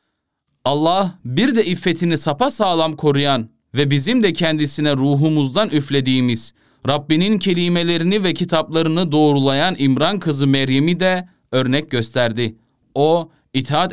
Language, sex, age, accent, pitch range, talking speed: Turkish, male, 30-49, native, 135-180 Hz, 110 wpm